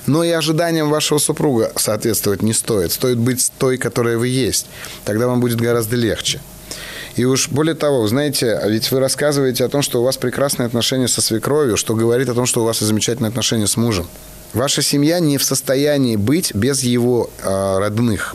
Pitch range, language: 110-140 Hz, Russian